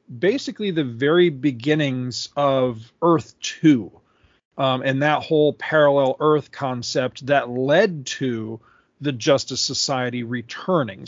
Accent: American